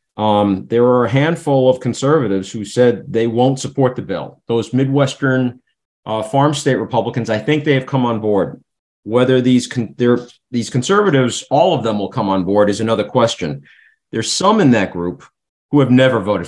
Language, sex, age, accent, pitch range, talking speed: English, male, 50-69, American, 105-130 Hz, 185 wpm